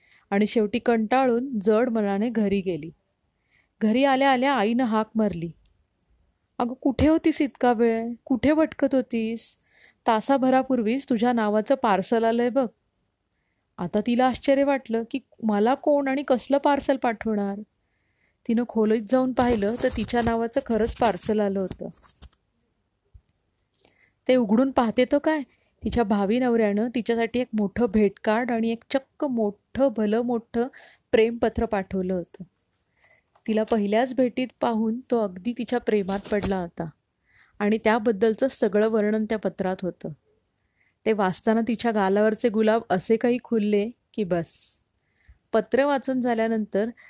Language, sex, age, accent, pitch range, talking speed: Marathi, female, 30-49, native, 210-250 Hz, 120 wpm